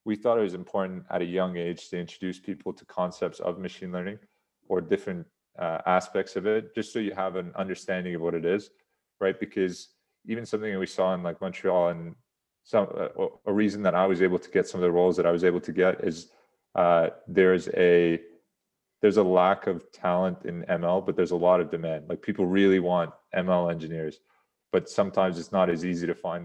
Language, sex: English, male